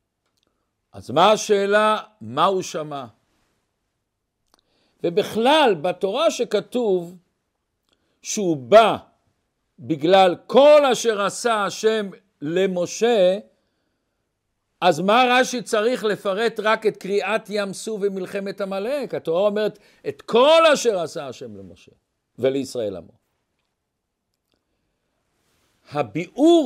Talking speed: 90 wpm